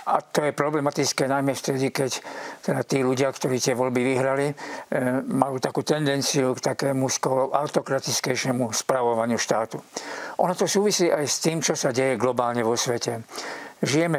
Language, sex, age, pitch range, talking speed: Slovak, male, 50-69, 125-145 Hz, 155 wpm